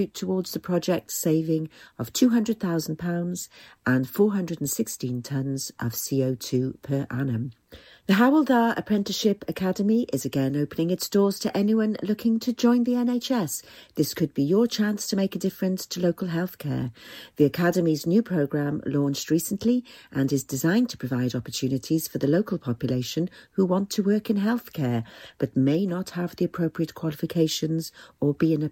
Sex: female